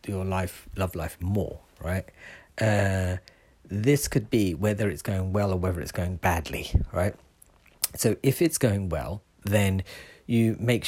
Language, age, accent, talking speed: English, 40-59, British, 155 wpm